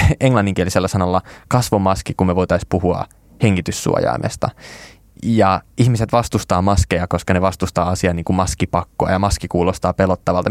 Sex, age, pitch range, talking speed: male, 20-39, 90-110 Hz, 130 wpm